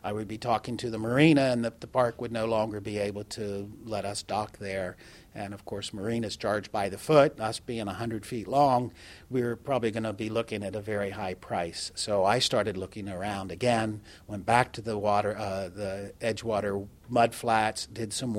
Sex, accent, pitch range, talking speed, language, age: male, American, 105-130 Hz, 205 wpm, English, 50-69